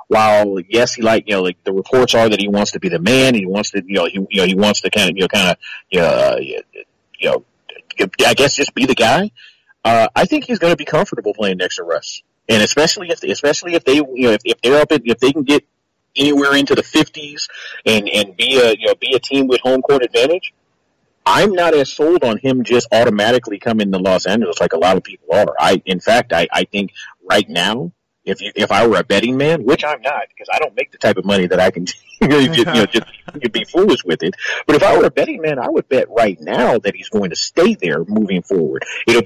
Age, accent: 40-59, American